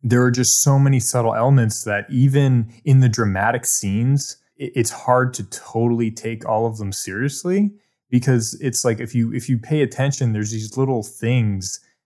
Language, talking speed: English, 175 wpm